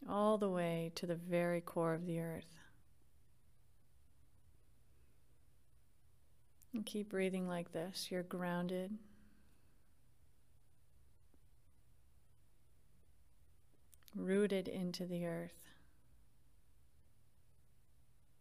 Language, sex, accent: English, female, American